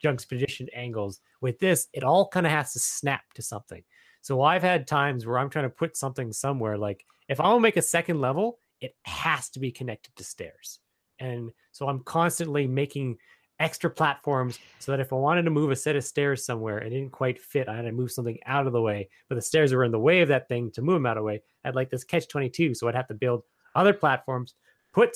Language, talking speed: English, 245 wpm